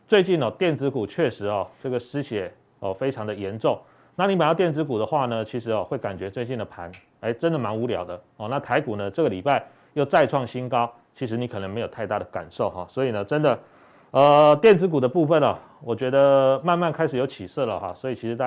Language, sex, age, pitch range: Chinese, male, 30-49, 110-145 Hz